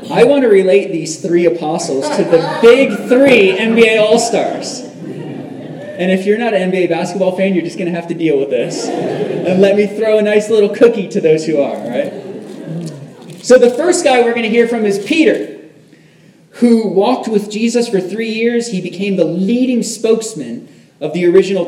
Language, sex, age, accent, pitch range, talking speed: English, male, 30-49, American, 170-220 Hz, 190 wpm